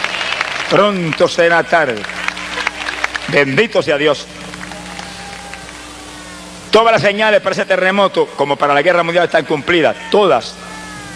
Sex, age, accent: male, 50-69, Spanish